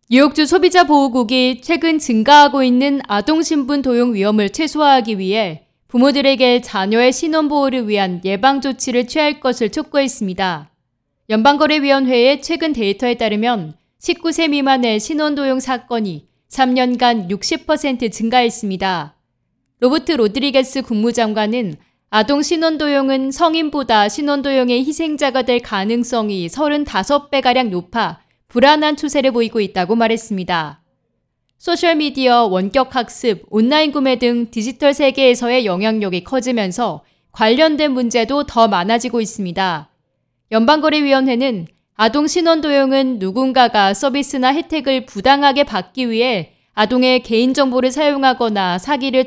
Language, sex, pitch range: Korean, female, 215-285 Hz